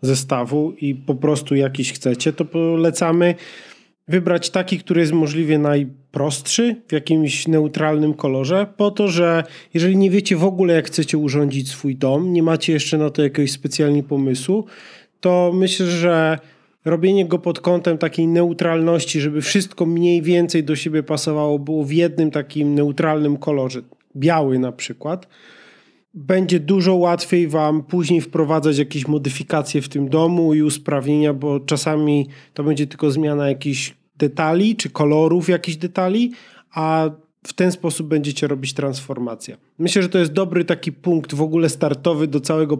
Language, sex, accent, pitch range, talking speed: Polish, male, native, 145-170 Hz, 150 wpm